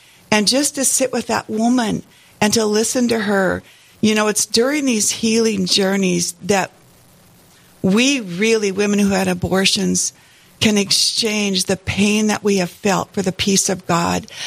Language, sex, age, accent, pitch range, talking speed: English, female, 60-79, American, 175-210 Hz, 160 wpm